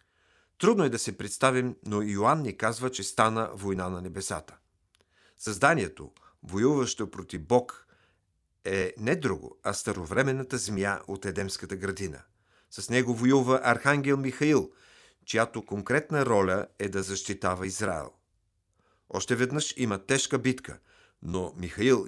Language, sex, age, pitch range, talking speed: Bulgarian, male, 50-69, 95-125 Hz, 125 wpm